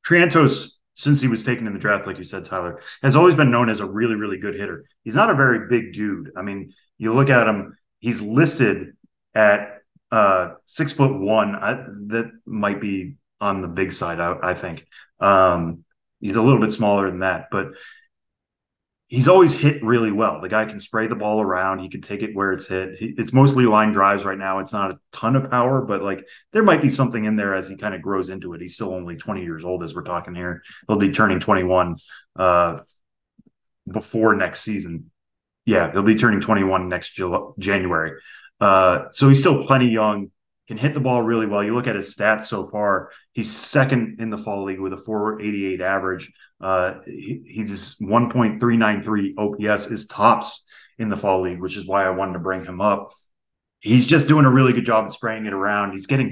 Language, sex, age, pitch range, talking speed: English, male, 20-39, 95-120 Hz, 205 wpm